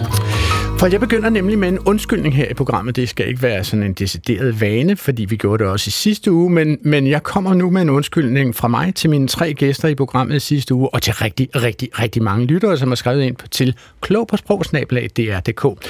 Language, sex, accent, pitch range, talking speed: Danish, male, native, 120-170 Hz, 215 wpm